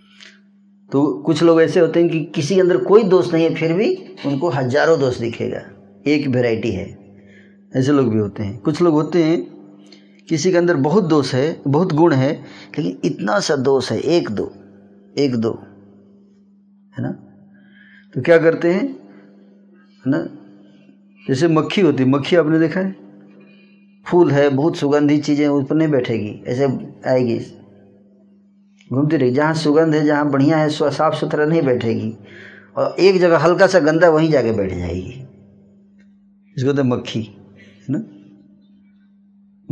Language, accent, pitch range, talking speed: Hindi, native, 105-170 Hz, 160 wpm